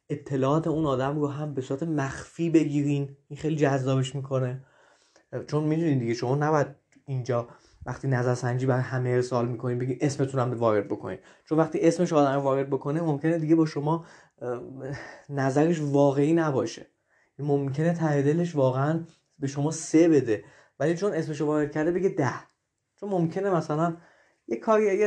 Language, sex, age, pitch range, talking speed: Persian, male, 20-39, 130-170 Hz, 150 wpm